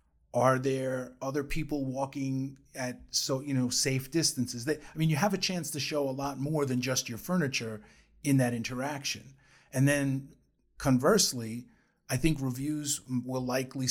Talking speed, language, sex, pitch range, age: 165 wpm, English, male, 120-140 Hz, 40-59